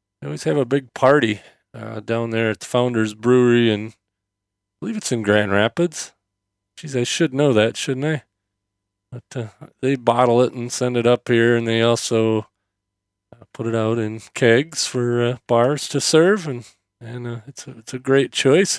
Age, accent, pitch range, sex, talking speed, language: 40-59, American, 100-125 Hz, male, 190 wpm, English